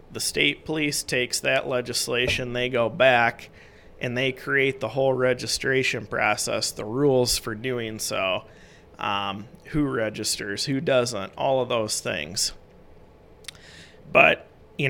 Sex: male